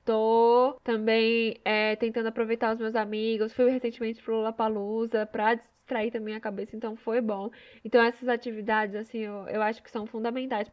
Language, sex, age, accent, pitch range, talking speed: Portuguese, female, 10-29, Brazilian, 225-250 Hz, 160 wpm